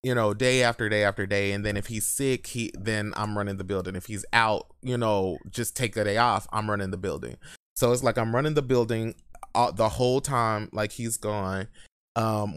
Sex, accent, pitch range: male, American, 105-120 Hz